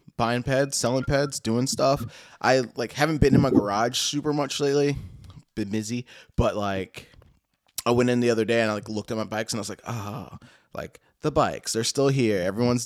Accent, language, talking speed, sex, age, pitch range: American, English, 215 wpm, male, 20-39, 105-125 Hz